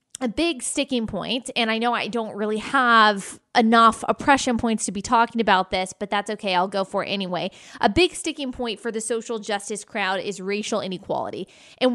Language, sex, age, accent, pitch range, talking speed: English, female, 20-39, American, 215-265 Hz, 200 wpm